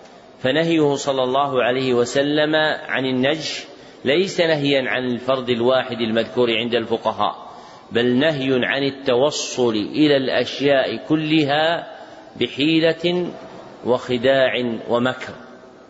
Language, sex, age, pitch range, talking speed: Arabic, male, 40-59, 120-135 Hz, 95 wpm